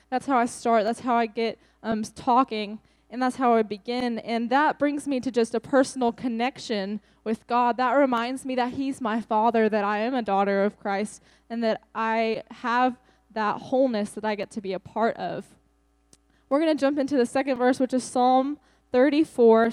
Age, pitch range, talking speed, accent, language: 10-29, 225-260 Hz, 200 wpm, American, English